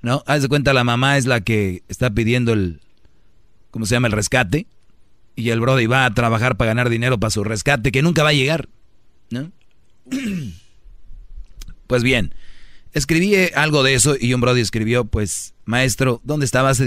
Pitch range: 115-140 Hz